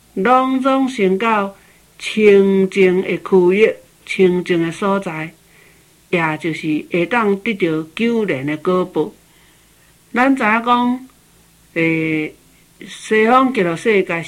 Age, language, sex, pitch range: 60-79, Chinese, male, 170-225 Hz